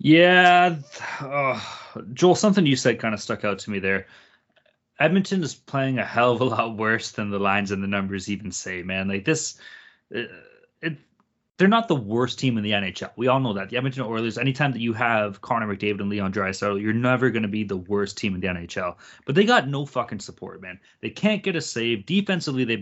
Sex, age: male, 20-39